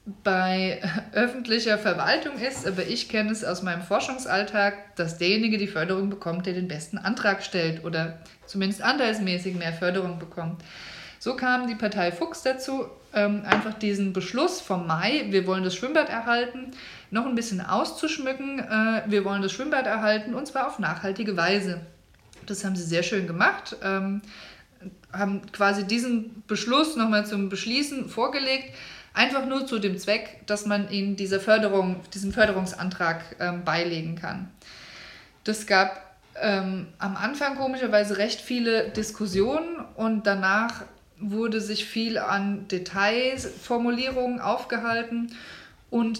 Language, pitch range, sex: German, 190-235 Hz, female